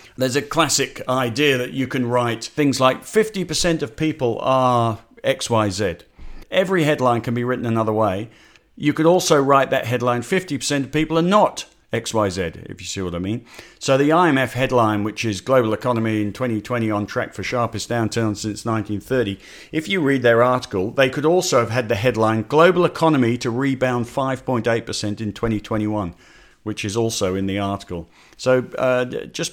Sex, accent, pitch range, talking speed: male, British, 110-140 Hz, 175 wpm